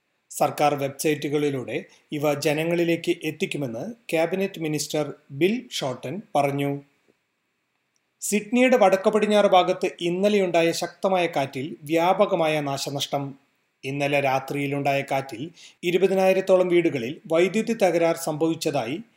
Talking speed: 80 wpm